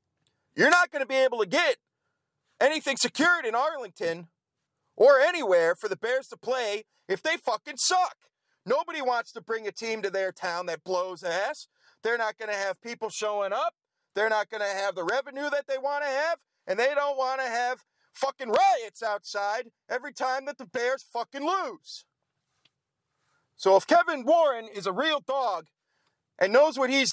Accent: American